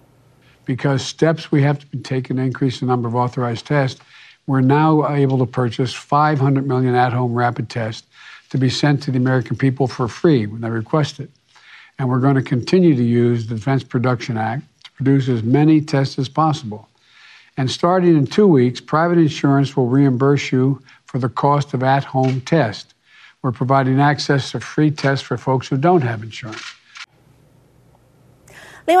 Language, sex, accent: Chinese, male, American